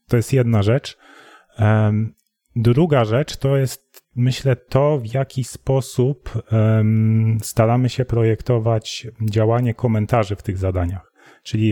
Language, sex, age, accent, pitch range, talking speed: Polish, male, 30-49, native, 110-130 Hz, 115 wpm